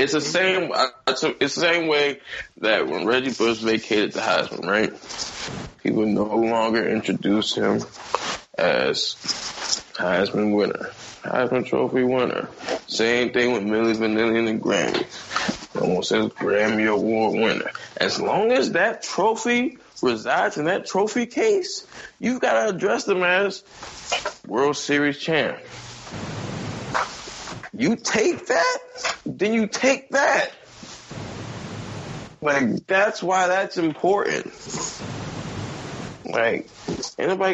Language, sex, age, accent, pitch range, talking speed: English, male, 20-39, American, 110-185 Hz, 115 wpm